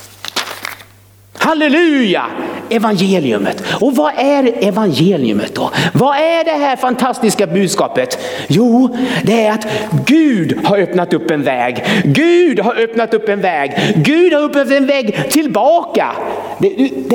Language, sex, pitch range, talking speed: Swedish, male, 175-275 Hz, 130 wpm